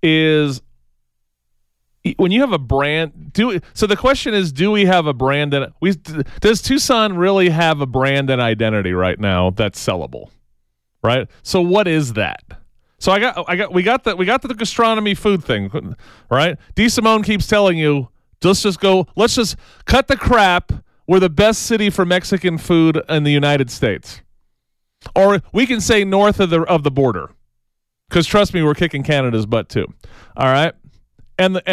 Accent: American